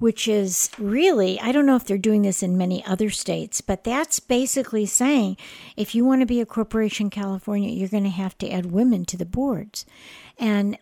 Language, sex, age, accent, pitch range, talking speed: English, female, 60-79, American, 205-255 Hz, 210 wpm